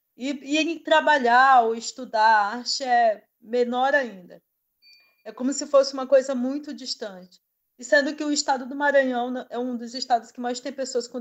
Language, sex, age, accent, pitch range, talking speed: Portuguese, female, 20-39, Brazilian, 230-280 Hz, 185 wpm